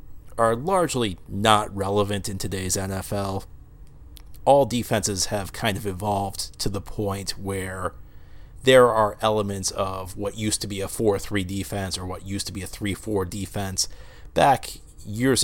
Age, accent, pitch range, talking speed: 30-49, American, 95-105 Hz, 150 wpm